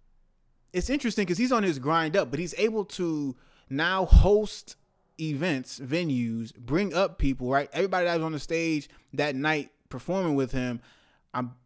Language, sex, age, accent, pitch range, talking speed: English, male, 20-39, American, 125-160 Hz, 165 wpm